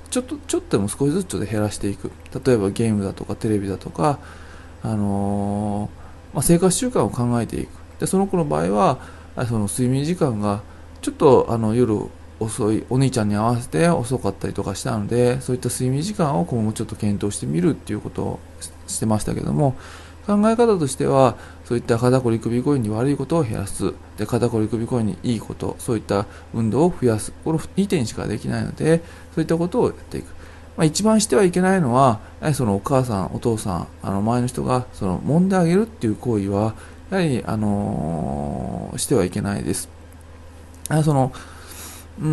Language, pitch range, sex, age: Japanese, 95-130 Hz, male, 20-39